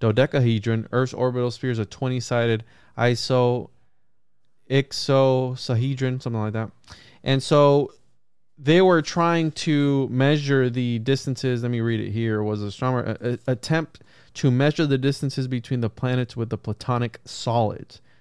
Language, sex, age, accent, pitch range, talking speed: English, male, 20-39, American, 115-140 Hz, 145 wpm